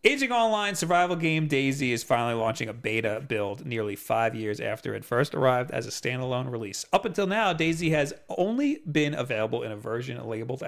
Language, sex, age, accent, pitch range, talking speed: English, male, 40-59, American, 120-155 Hz, 190 wpm